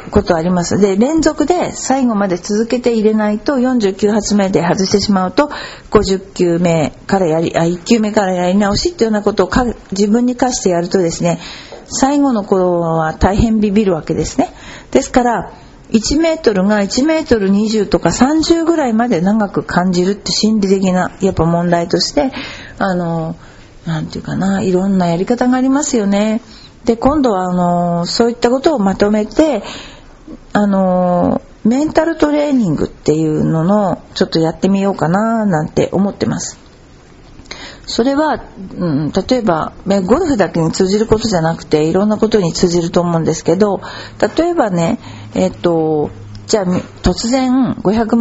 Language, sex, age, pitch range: Japanese, female, 50-69, 175-230 Hz